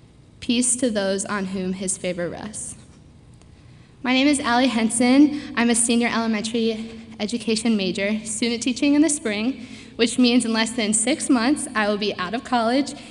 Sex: female